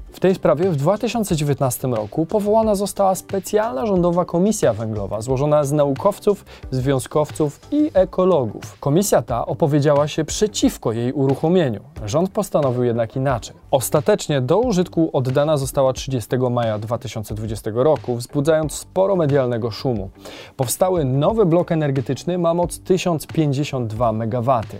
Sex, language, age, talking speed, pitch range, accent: male, Polish, 20-39, 120 wpm, 130-190 Hz, native